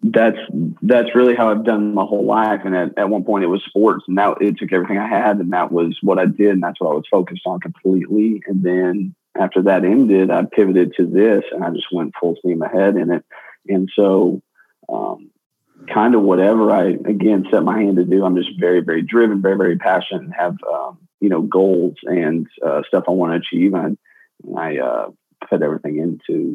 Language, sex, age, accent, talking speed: English, male, 40-59, American, 215 wpm